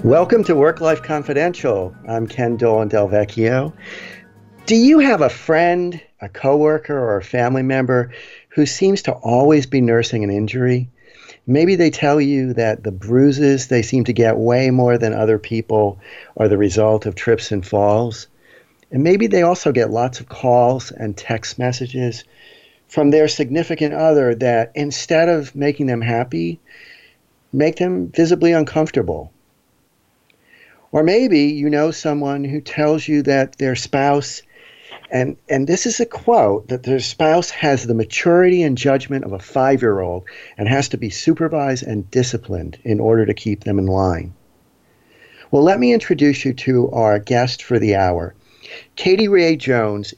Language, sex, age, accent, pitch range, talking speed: English, male, 40-59, American, 110-150 Hz, 160 wpm